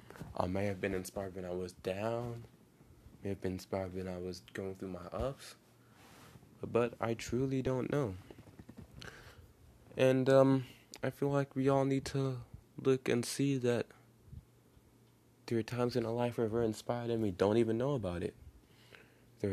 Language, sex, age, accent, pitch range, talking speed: English, male, 20-39, American, 100-120 Hz, 170 wpm